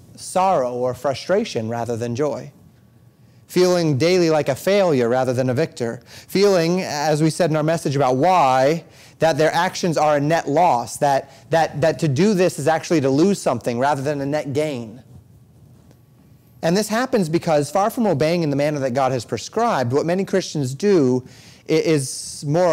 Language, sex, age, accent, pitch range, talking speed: English, male, 30-49, American, 130-165 Hz, 175 wpm